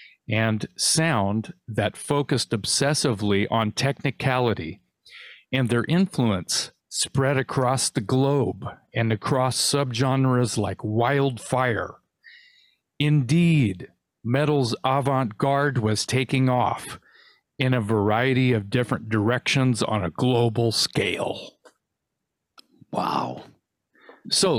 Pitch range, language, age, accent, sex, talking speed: 115-140 Hz, English, 40-59, American, male, 95 wpm